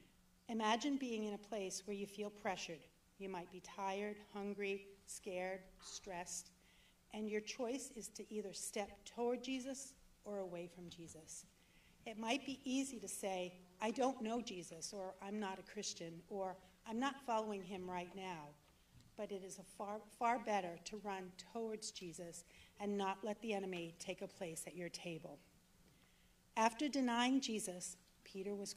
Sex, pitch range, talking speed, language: female, 180-220 Hz, 160 wpm, English